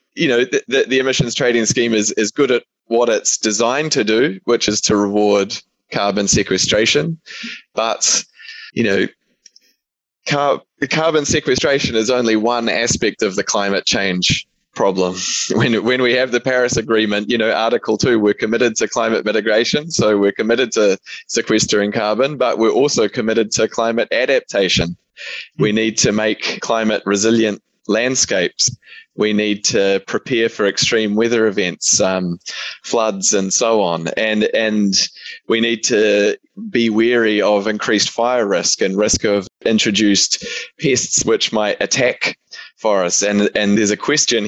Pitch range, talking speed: 105-125 Hz, 150 wpm